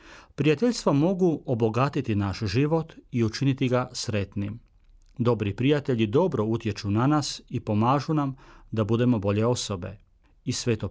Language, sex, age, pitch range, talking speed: Croatian, male, 40-59, 110-155 Hz, 130 wpm